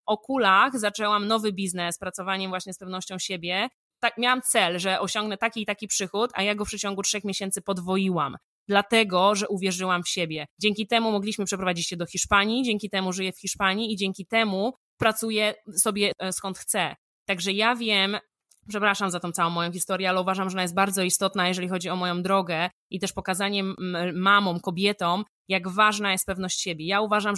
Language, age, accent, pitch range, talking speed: Polish, 20-39, native, 185-210 Hz, 180 wpm